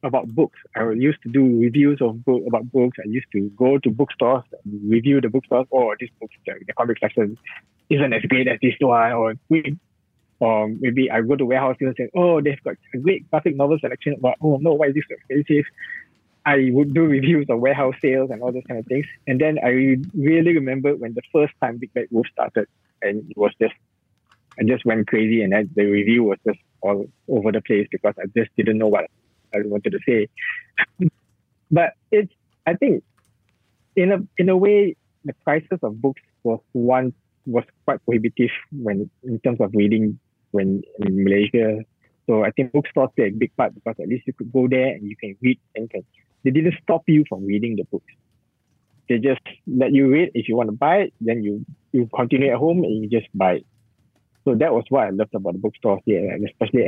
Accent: Malaysian